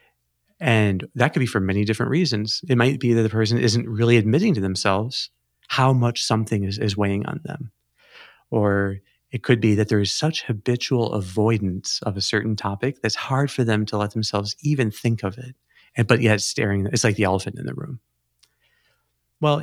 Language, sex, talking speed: English, male, 195 wpm